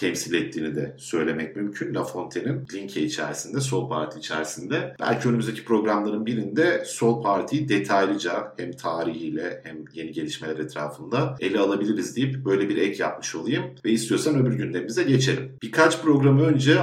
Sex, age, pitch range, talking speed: male, 50-69, 95-135 Hz, 145 wpm